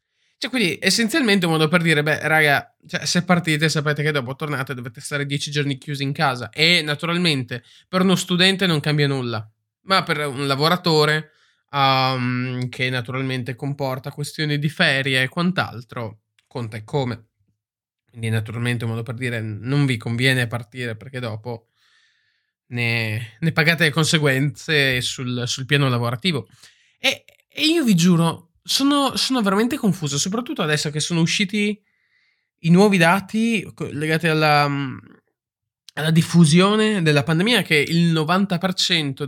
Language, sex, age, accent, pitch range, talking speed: Italian, male, 20-39, native, 130-175 Hz, 145 wpm